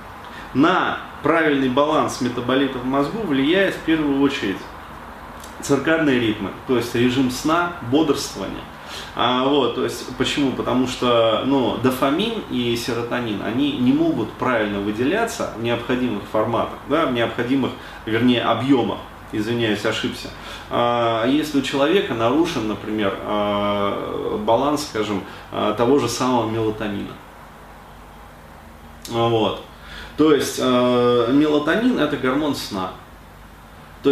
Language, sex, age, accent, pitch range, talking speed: Russian, male, 30-49, native, 110-140 Hz, 115 wpm